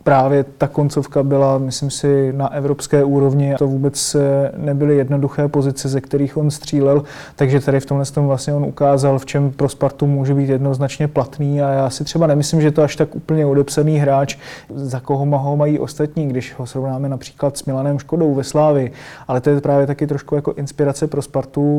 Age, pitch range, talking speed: 30-49, 135-145 Hz, 195 wpm